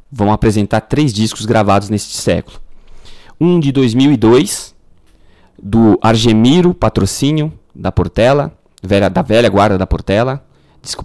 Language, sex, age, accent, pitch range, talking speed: Portuguese, male, 20-39, Brazilian, 100-130 Hz, 115 wpm